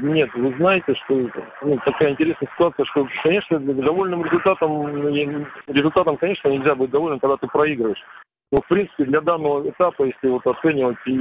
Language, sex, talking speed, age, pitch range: Russian, male, 155 wpm, 40-59, 125-150 Hz